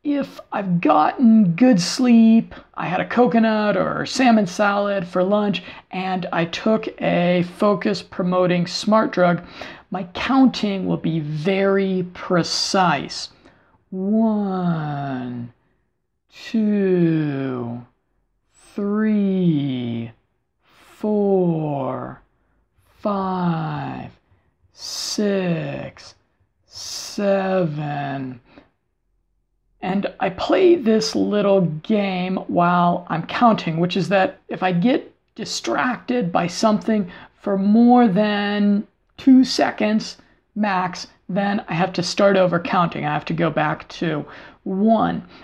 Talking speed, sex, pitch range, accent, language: 95 wpm, male, 175-220 Hz, American, English